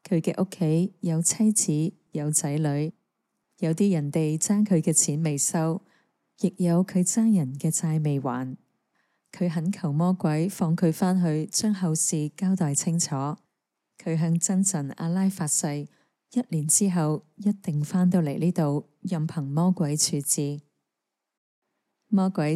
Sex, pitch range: female, 150-185 Hz